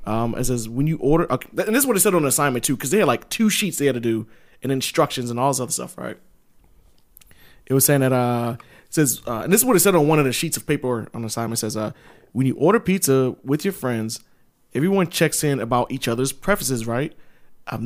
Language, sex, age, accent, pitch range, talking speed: English, male, 20-39, American, 125-170 Hz, 260 wpm